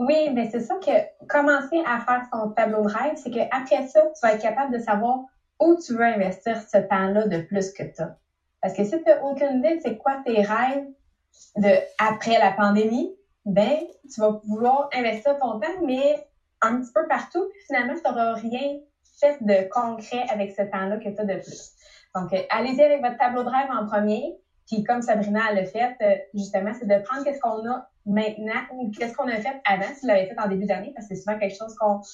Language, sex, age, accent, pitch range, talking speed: English, female, 20-39, Canadian, 205-285 Hz, 215 wpm